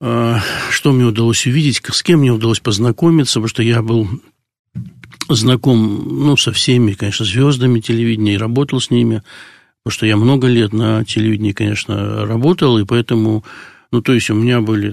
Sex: male